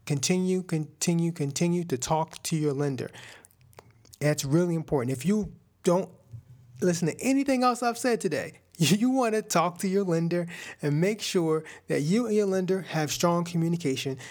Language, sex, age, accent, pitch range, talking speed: English, male, 30-49, American, 135-175 Hz, 165 wpm